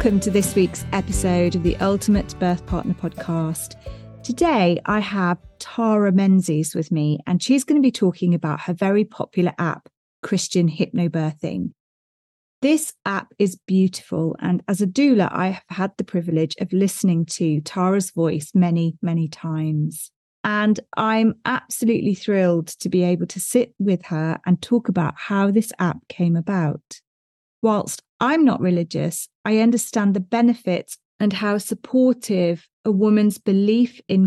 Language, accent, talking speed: English, British, 150 wpm